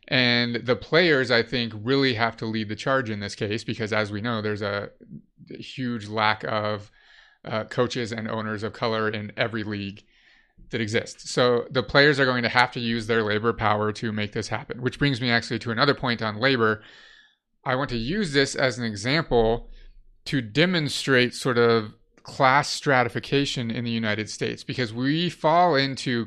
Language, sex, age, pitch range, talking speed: English, male, 30-49, 110-130 Hz, 185 wpm